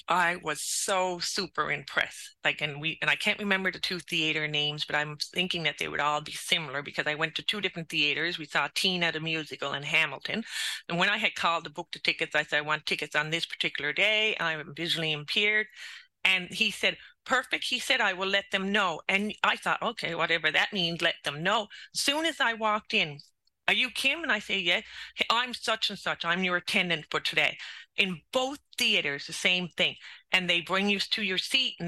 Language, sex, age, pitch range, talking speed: English, female, 30-49, 160-210 Hz, 220 wpm